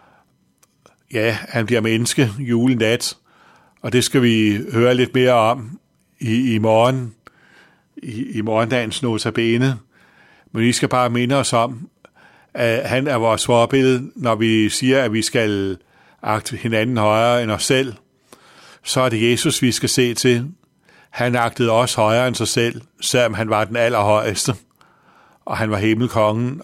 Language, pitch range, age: Danish, 110-120 Hz, 60-79